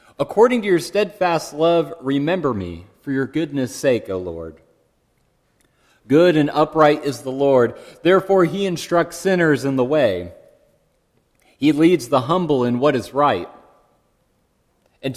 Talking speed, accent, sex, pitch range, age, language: 140 wpm, American, male, 115-160 Hz, 40-59, English